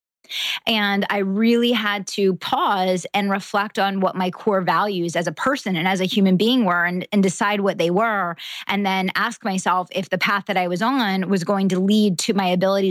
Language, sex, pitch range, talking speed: English, female, 185-215 Hz, 215 wpm